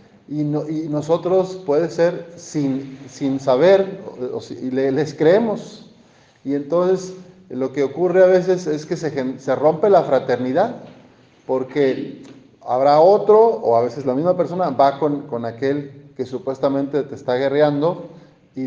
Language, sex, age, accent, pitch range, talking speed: Spanish, male, 40-59, Mexican, 135-185 Hz, 140 wpm